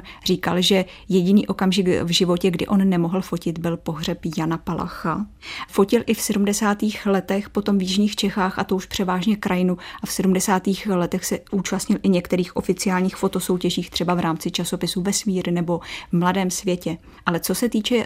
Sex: female